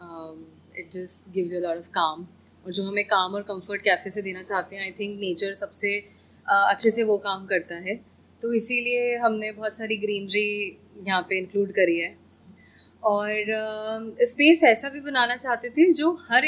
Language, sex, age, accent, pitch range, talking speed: Hindi, female, 30-49, native, 200-250 Hz, 195 wpm